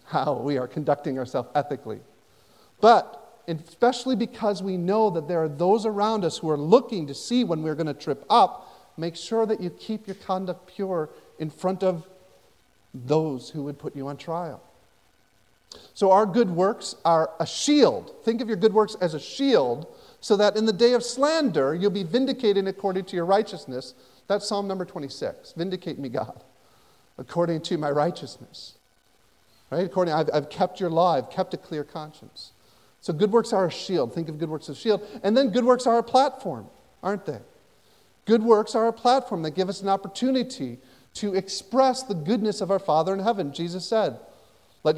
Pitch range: 160-215 Hz